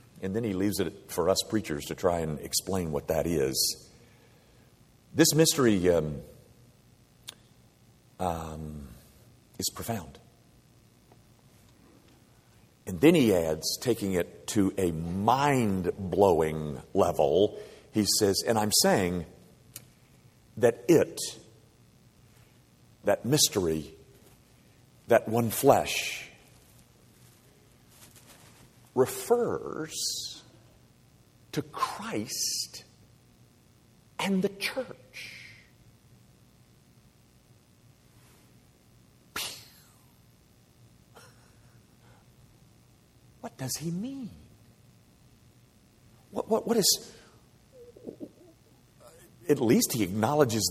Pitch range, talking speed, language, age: 95-145 Hz, 75 wpm, English, 50-69